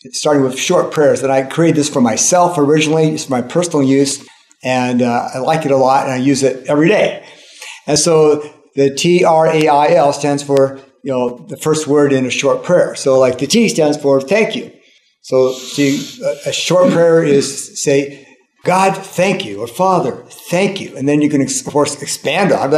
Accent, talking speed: American, 200 wpm